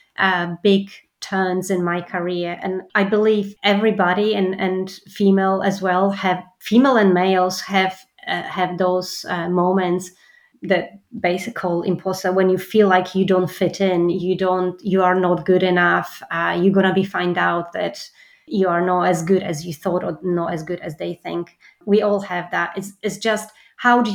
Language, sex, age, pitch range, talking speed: English, female, 30-49, 180-205 Hz, 185 wpm